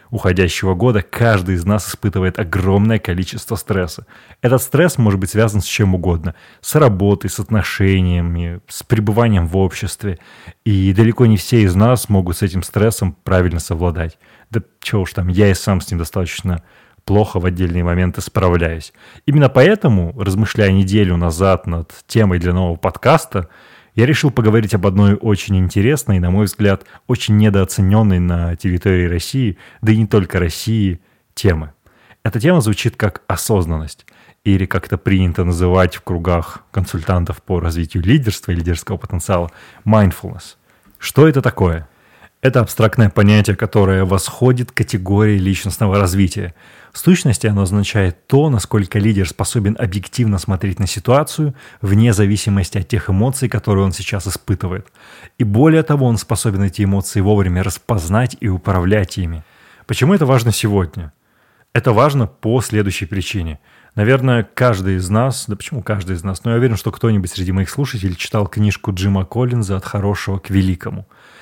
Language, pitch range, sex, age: Russian, 95-110 Hz, male, 20-39